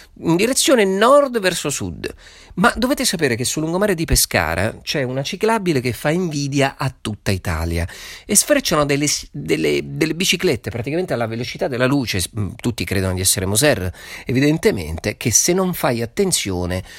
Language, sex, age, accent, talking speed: Italian, male, 40-59, native, 155 wpm